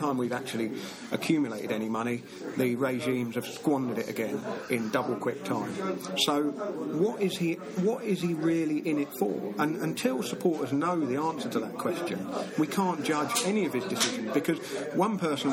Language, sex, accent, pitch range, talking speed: English, male, British, 125-165 Hz, 165 wpm